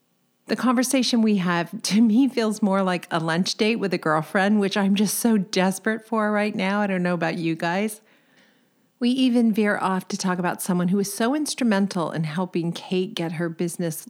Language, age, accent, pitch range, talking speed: English, 50-69, American, 160-210 Hz, 200 wpm